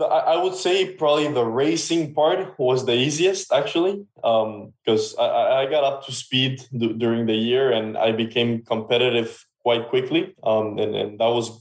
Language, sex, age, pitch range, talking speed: English, male, 20-39, 110-130 Hz, 170 wpm